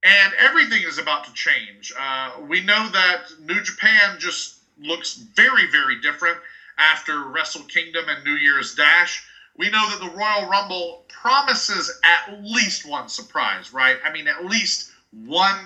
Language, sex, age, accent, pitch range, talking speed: English, male, 40-59, American, 165-235 Hz, 155 wpm